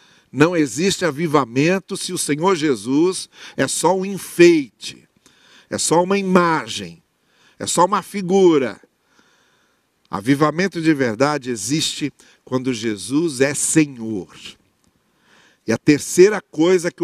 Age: 60-79